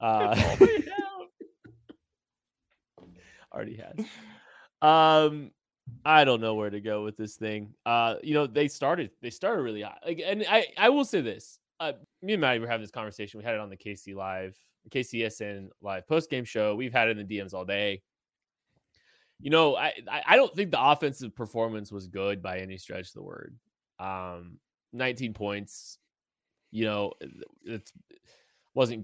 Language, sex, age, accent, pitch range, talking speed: English, male, 20-39, American, 105-165 Hz, 175 wpm